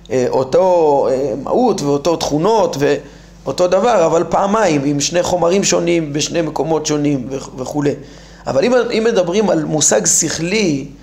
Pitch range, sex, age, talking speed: 150-185 Hz, male, 30-49, 120 wpm